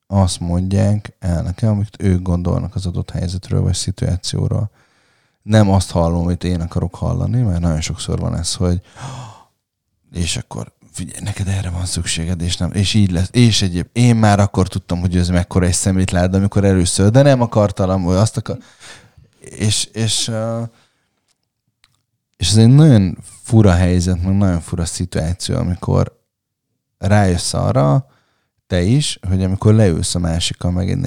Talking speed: 155 wpm